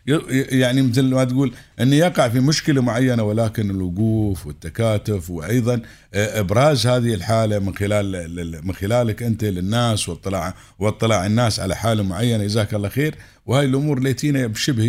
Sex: male